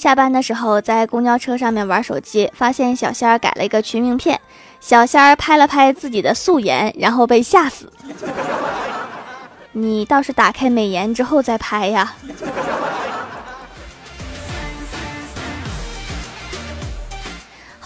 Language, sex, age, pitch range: Chinese, female, 20-39, 225-275 Hz